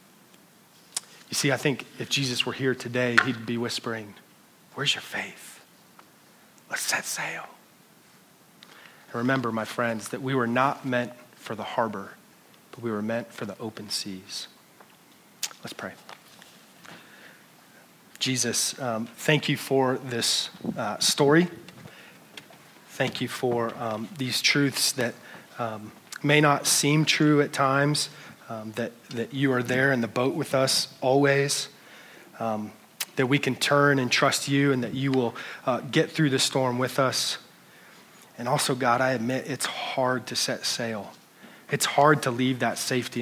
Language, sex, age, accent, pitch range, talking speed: English, male, 30-49, American, 120-145 Hz, 150 wpm